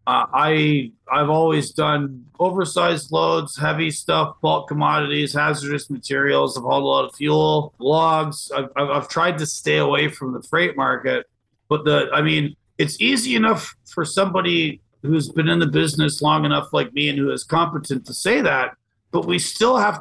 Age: 40-59